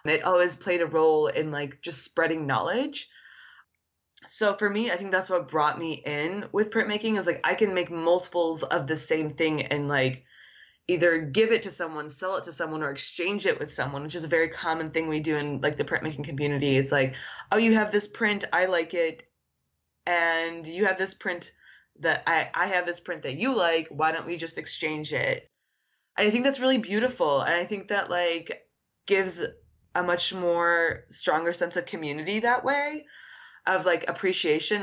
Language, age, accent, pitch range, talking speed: English, 20-39, American, 150-185 Hz, 200 wpm